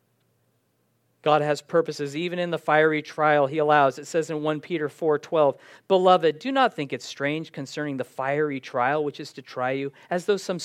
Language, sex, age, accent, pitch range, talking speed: English, male, 50-69, American, 145-200 Hz, 195 wpm